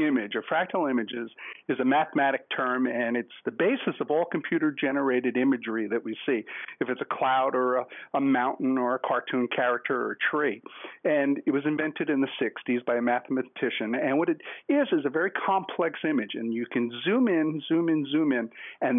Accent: American